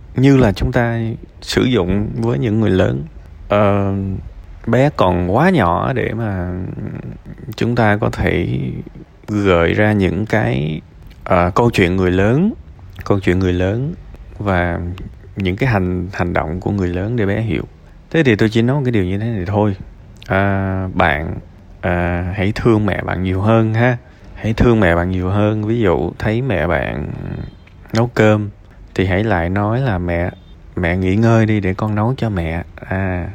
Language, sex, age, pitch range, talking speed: Vietnamese, male, 20-39, 90-110 Hz, 175 wpm